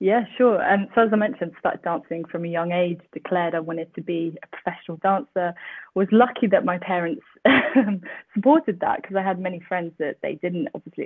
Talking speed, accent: 205 wpm, British